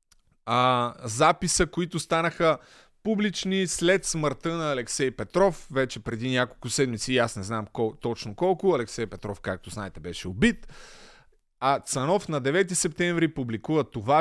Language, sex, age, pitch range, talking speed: Bulgarian, male, 30-49, 125-170 Hz, 140 wpm